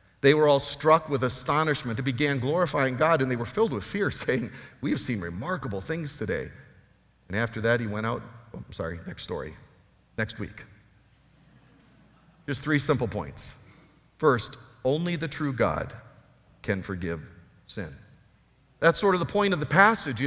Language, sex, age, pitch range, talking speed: English, male, 50-69, 140-215 Hz, 165 wpm